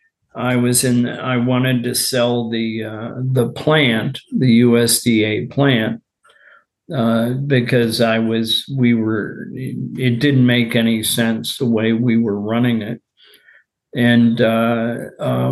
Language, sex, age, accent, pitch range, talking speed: English, male, 50-69, American, 115-130 Hz, 130 wpm